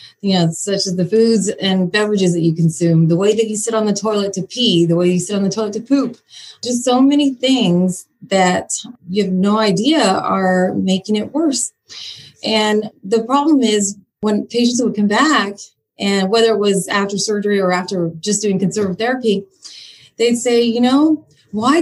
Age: 30-49